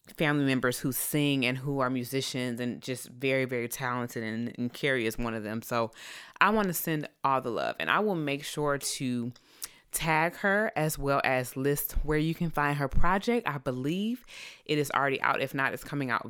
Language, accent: English, American